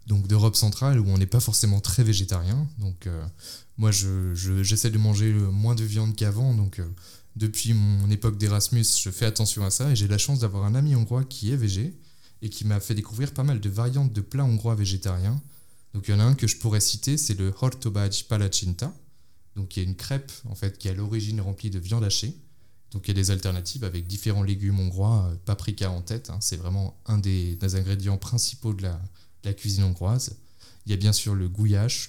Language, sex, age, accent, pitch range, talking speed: French, male, 20-39, French, 95-115 Hz, 225 wpm